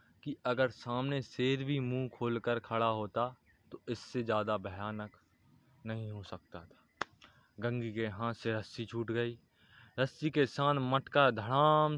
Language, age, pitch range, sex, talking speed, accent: Hindi, 20-39, 110-130 Hz, male, 145 wpm, native